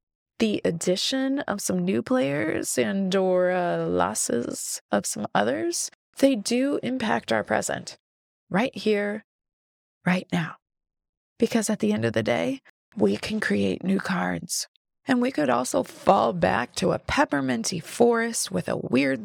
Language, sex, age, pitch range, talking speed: English, female, 20-39, 180-265 Hz, 145 wpm